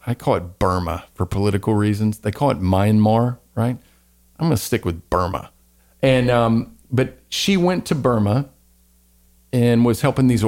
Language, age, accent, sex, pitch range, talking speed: English, 40-59, American, male, 95-135 Hz, 165 wpm